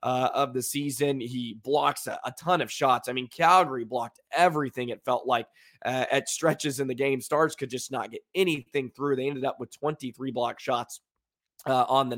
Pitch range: 130-155 Hz